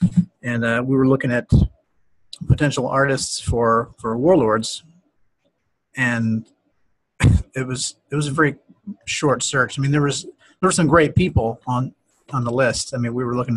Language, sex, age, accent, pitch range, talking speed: English, male, 30-49, American, 115-140 Hz, 170 wpm